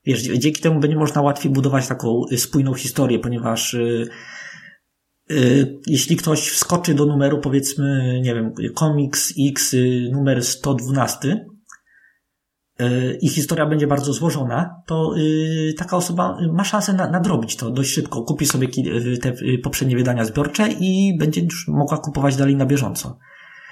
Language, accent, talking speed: Polish, native, 130 wpm